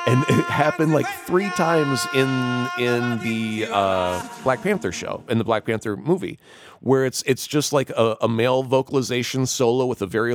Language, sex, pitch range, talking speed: English, male, 105-130 Hz, 180 wpm